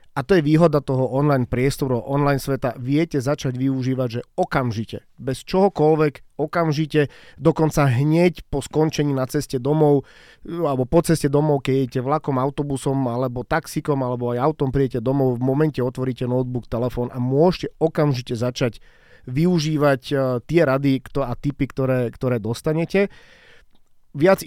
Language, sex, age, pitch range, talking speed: Slovak, male, 30-49, 125-150 Hz, 140 wpm